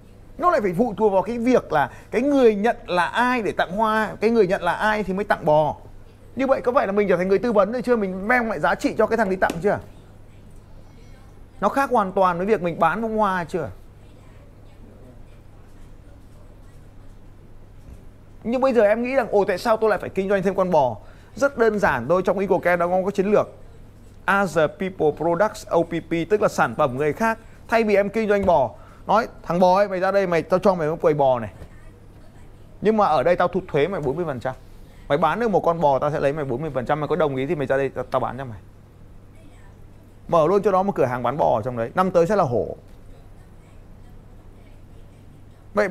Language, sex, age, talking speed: Vietnamese, male, 20-39, 220 wpm